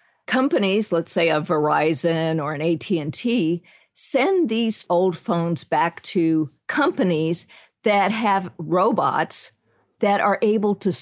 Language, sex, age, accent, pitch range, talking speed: English, female, 50-69, American, 170-200 Hz, 120 wpm